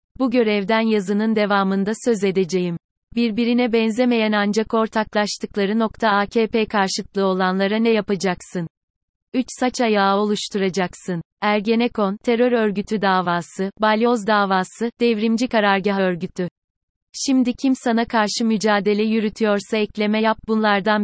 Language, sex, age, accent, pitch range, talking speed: Turkish, female, 30-49, native, 195-225 Hz, 110 wpm